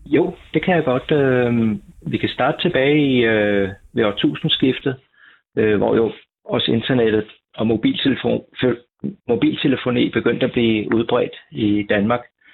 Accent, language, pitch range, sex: native, Danish, 105-125 Hz, male